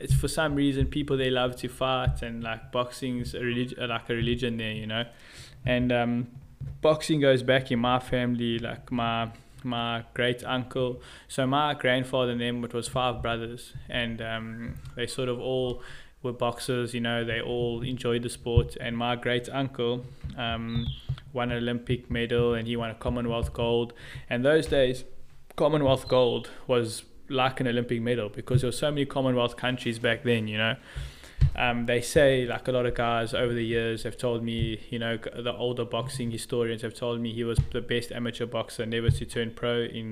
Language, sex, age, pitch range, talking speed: English, male, 20-39, 120-130 Hz, 190 wpm